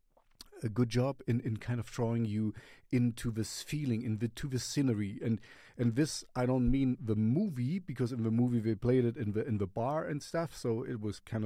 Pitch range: 110-130 Hz